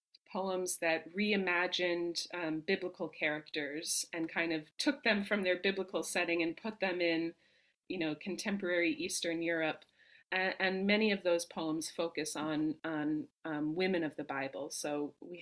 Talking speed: 155 wpm